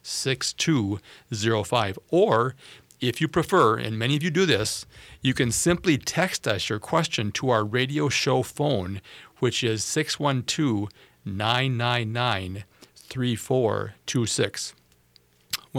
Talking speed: 110 wpm